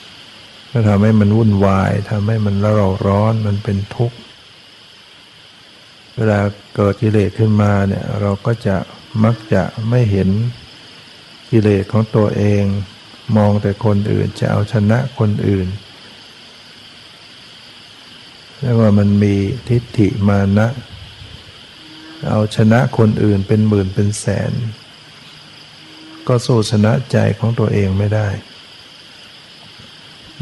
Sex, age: male, 60-79